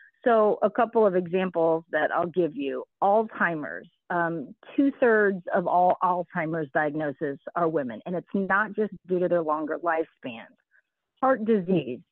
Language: English